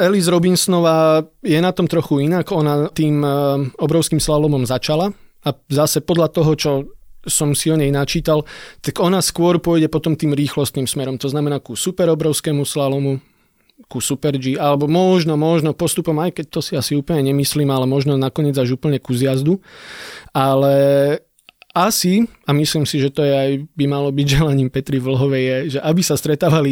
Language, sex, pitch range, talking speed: Slovak, male, 140-165 Hz, 170 wpm